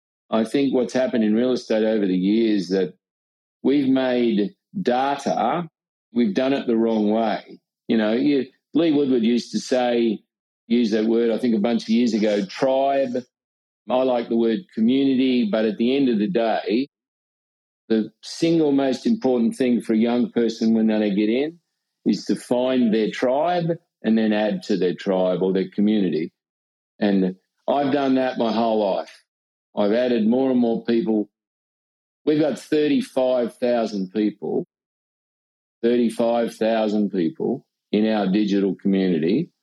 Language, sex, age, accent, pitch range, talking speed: English, male, 50-69, Australian, 105-130 Hz, 155 wpm